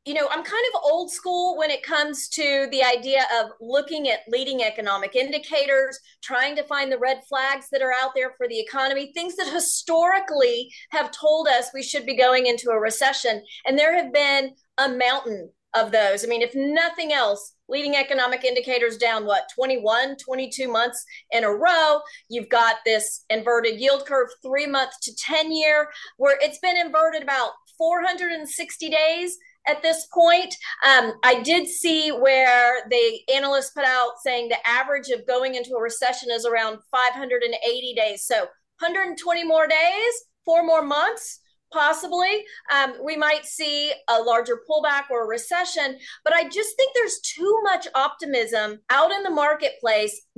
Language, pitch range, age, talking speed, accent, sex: English, 245-325 Hz, 30-49, 170 wpm, American, female